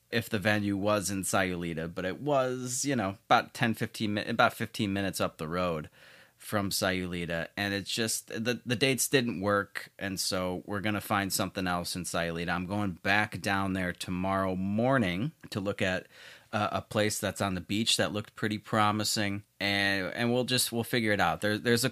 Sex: male